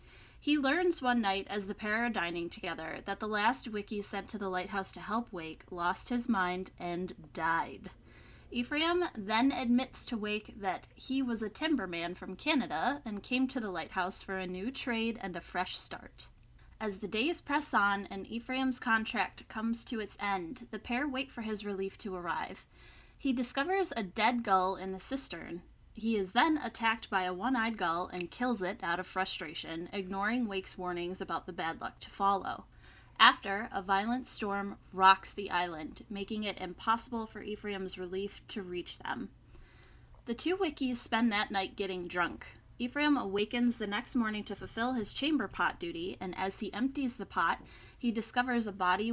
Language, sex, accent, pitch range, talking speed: English, female, American, 190-245 Hz, 180 wpm